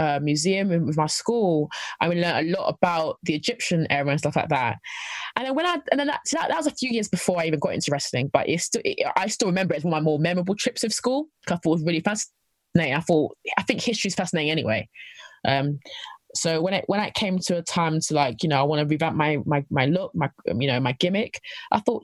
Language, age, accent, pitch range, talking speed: English, 20-39, British, 160-210 Hz, 270 wpm